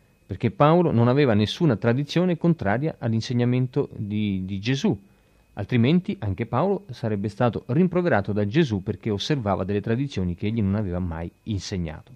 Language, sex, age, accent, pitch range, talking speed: Italian, male, 40-59, native, 100-135 Hz, 145 wpm